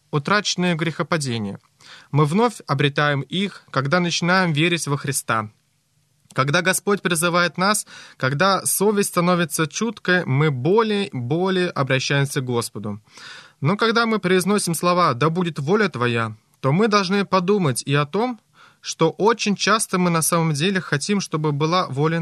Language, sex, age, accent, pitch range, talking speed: Russian, male, 20-39, native, 145-190 Hz, 145 wpm